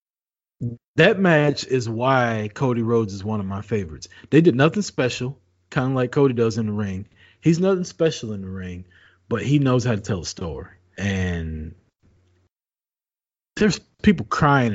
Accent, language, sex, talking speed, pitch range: American, English, male, 165 wpm, 90-130 Hz